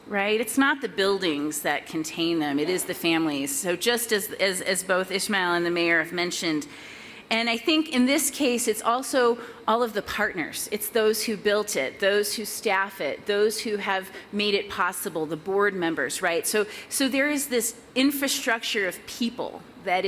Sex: female